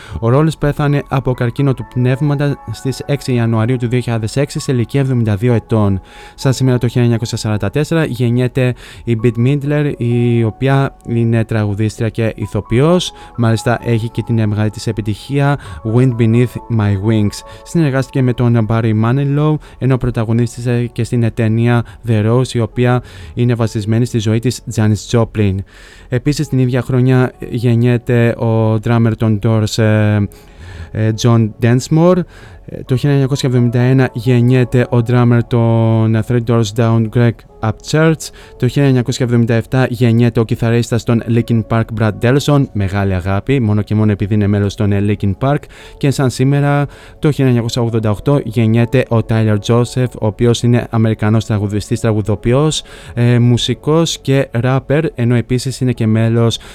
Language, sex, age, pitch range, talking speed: Greek, male, 20-39, 110-130 Hz, 135 wpm